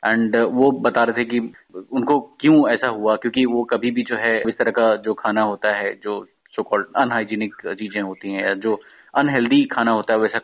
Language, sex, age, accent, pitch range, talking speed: Hindi, male, 20-39, native, 110-130 Hz, 205 wpm